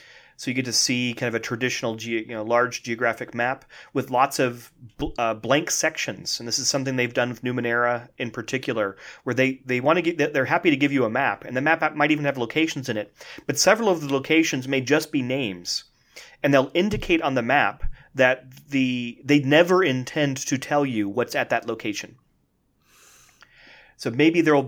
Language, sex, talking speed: English, male, 200 wpm